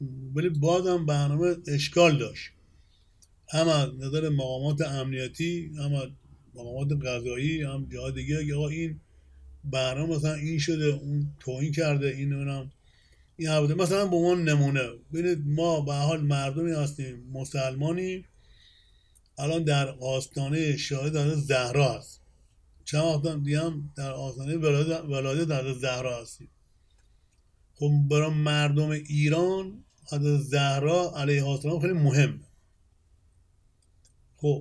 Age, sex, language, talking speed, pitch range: 50-69, male, Persian, 115 wpm, 130-155 Hz